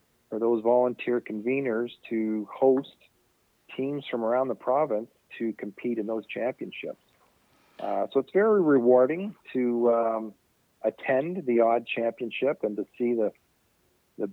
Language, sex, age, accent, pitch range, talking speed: English, male, 50-69, American, 110-130 Hz, 130 wpm